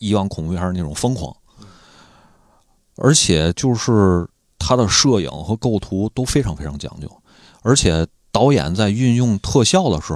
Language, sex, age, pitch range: Chinese, male, 30-49, 85-110 Hz